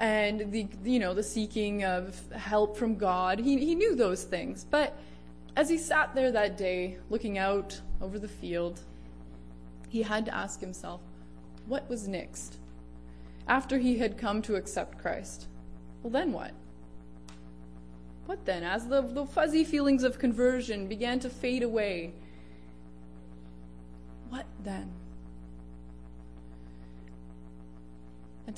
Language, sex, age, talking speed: English, female, 20-39, 130 wpm